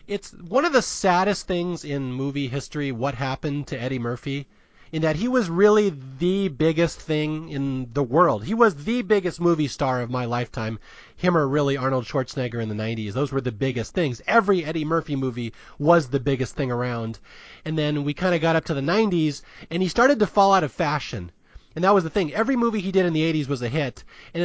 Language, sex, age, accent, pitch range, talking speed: English, male, 30-49, American, 130-175 Hz, 220 wpm